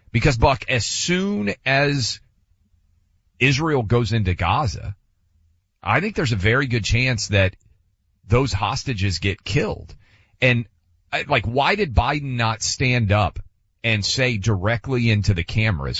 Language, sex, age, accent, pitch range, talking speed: English, male, 40-59, American, 95-125 Hz, 130 wpm